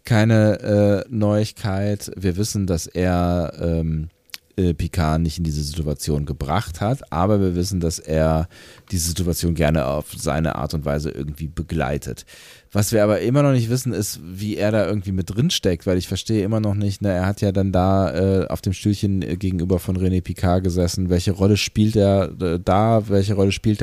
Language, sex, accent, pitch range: German, male, German, 90-105 Hz